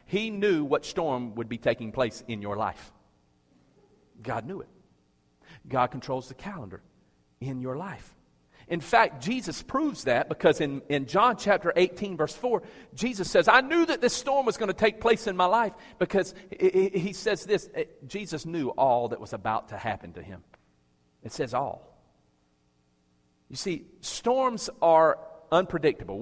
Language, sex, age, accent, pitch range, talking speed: English, male, 40-59, American, 120-195 Hz, 160 wpm